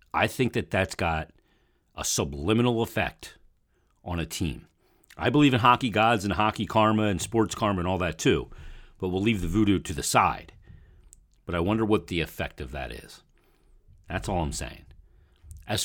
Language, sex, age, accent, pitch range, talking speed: English, male, 40-59, American, 80-105 Hz, 180 wpm